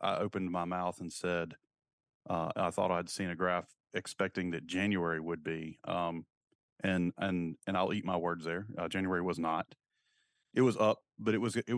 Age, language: 30-49, English